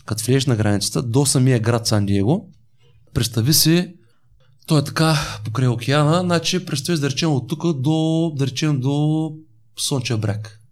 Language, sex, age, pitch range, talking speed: Bulgarian, male, 30-49, 115-155 Hz, 145 wpm